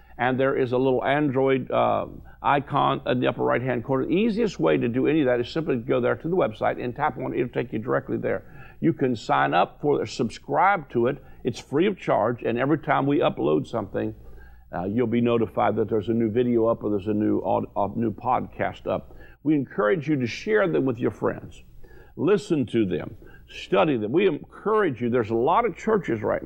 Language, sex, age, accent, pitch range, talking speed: English, male, 50-69, American, 110-145 Hz, 220 wpm